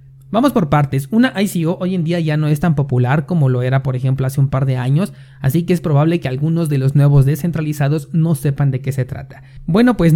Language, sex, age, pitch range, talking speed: Spanish, male, 30-49, 135-170 Hz, 240 wpm